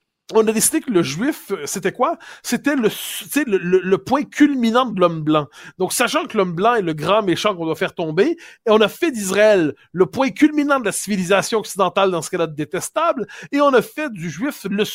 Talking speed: 225 wpm